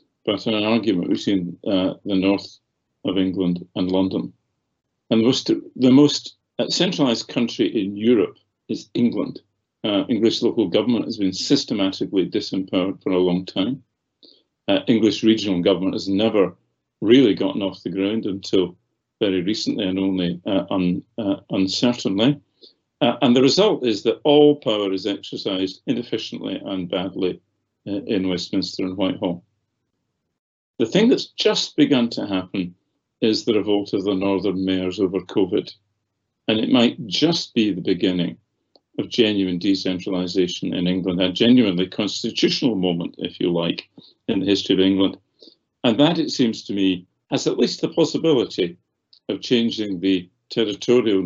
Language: English